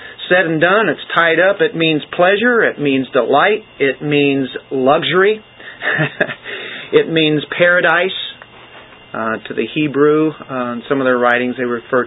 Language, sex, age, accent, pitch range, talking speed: English, male, 40-59, American, 125-160 Hz, 150 wpm